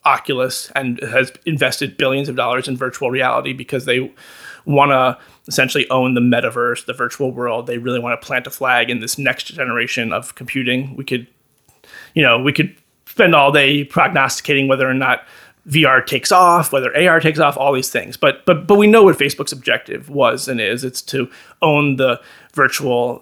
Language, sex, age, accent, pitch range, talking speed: English, male, 30-49, American, 125-145 Hz, 190 wpm